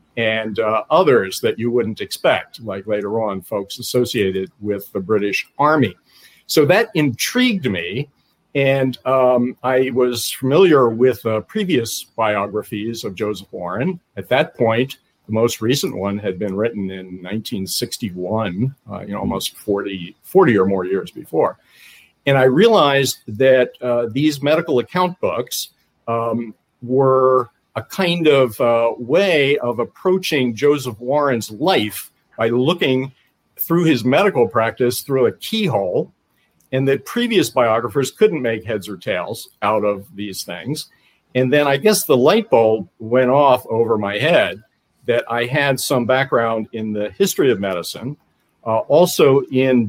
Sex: male